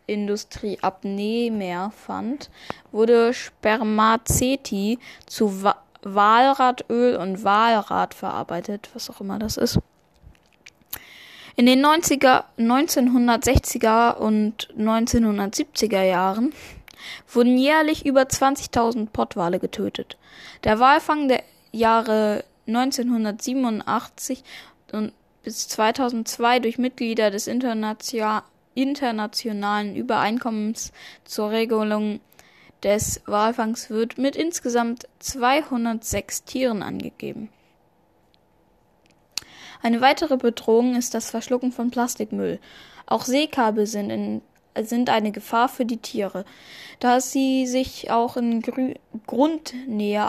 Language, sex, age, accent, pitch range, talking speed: German, female, 10-29, German, 215-255 Hz, 90 wpm